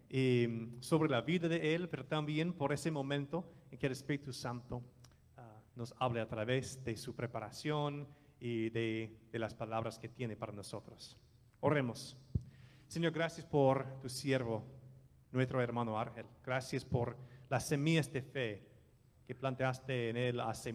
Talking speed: 150 wpm